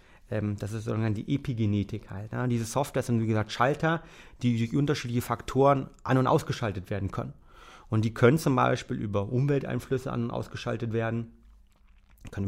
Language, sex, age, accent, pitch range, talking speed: German, male, 30-49, German, 115-140 Hz, 155 wpm